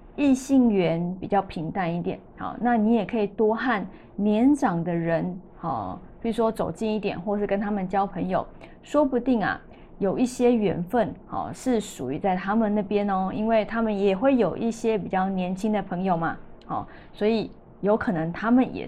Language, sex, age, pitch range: Chinese, female, 20-39, 190-235 Hz